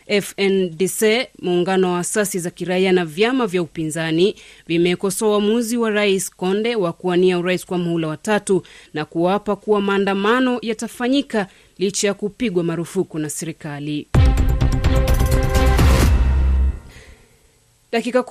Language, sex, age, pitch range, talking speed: Swahili, female, 30-49, 175-225 Hz, 120 wpm